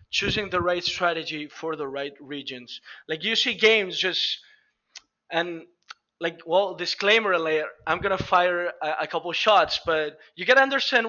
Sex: male